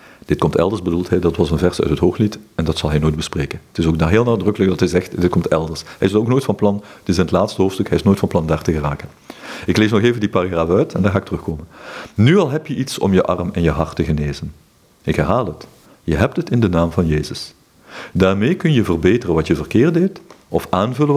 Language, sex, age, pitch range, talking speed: Dutch, male, 50-69, 85-115 Hz, 270 wpm